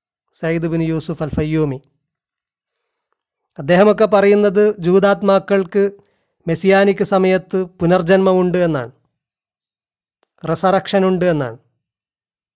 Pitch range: 160-195 Hz